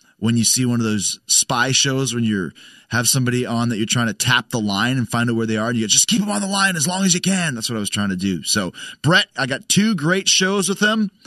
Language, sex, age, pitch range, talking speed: English, male, 30-49, 110-165 Hz, 300 wpm